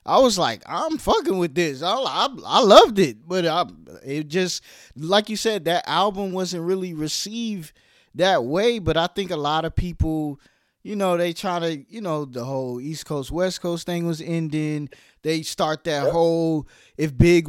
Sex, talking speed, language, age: male, 190 wpm, English, 20-39